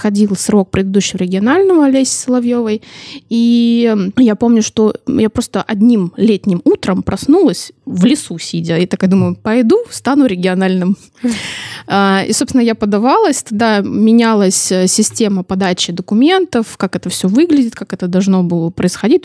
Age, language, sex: 20-39, Russian, female